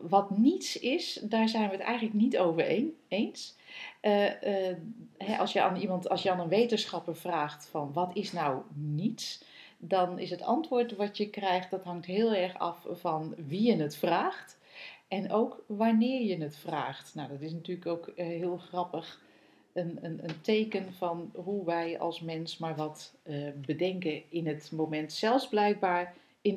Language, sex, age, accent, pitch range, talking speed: Dutch, female, 40-59, Dutch, 165-215 Hz, 180 wpm